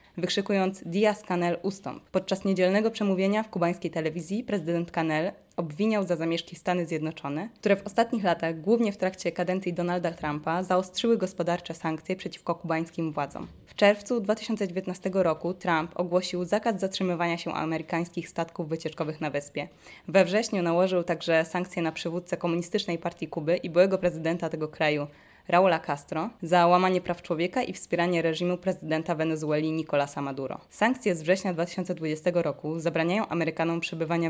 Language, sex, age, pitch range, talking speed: Polish, female, 20-39, 165-190 Hz, 145 wpm